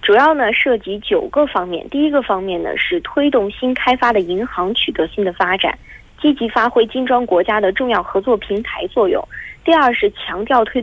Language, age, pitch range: Korean, 20-39, 200-270 Hz